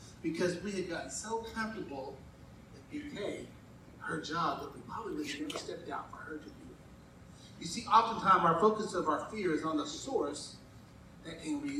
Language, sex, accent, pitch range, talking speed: English, male, American, 180-235 Hz, 195 wpm